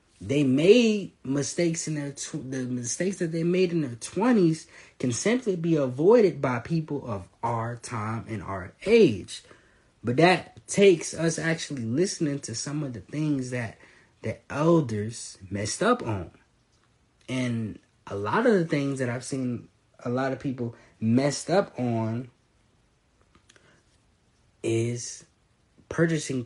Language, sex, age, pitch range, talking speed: English, male, 20-39, 110-145 Hz, 140 wpm